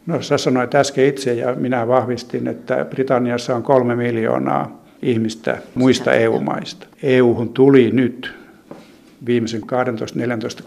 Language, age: Finnish, 60-79